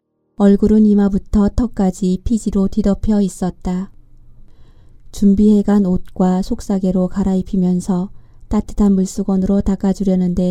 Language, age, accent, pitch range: Korean, 20-39, native, 180-205 Hz